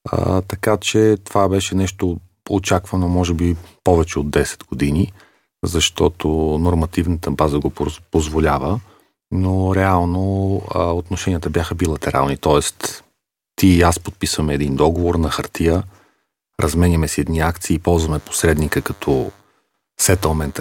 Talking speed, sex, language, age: 120 wpm, male, Bulgarian, 40-59